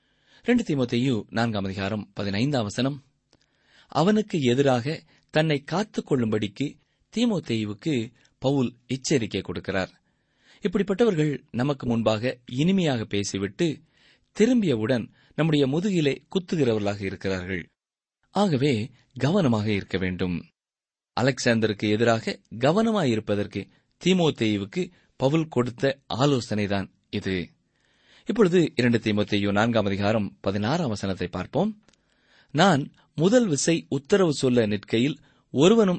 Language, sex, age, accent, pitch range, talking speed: Tamil, male, 30-49, native, 110-165 Hz, 80 wpm